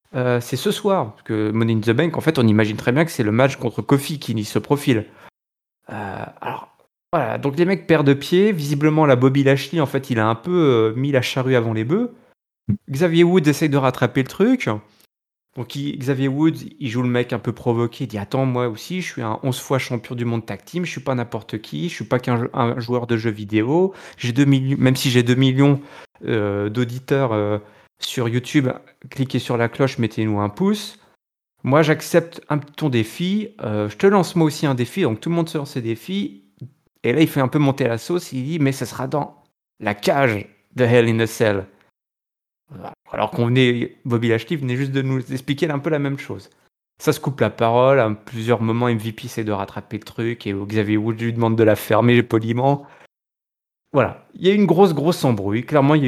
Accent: French